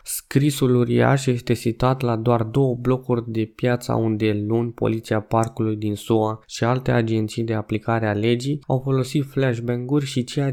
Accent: native